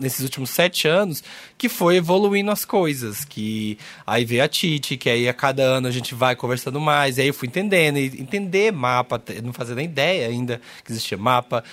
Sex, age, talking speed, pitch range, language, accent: male, 20-39, 200 wpm, 125-170 Hz, Portuguese, Brazilian